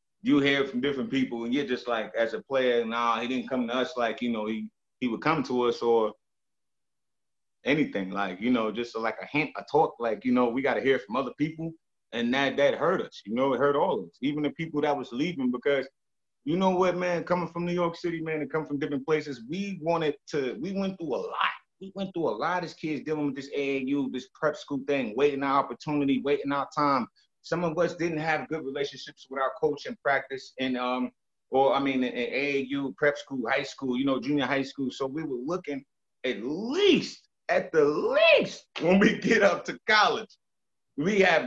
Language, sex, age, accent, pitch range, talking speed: English, male, 30-49, American, 130-170 Hz, 225 wpm